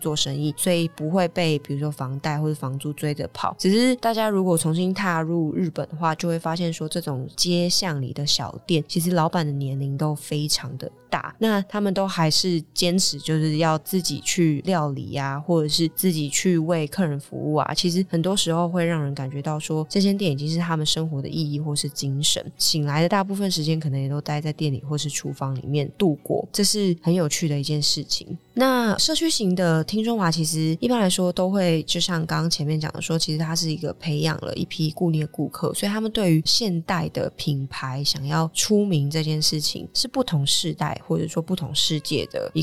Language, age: Chinese, 20-39